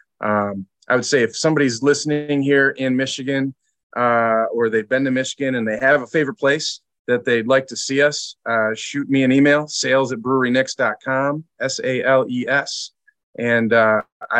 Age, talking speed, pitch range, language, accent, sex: 30-49, 180 wpm, 110-135 Hz, English, American, male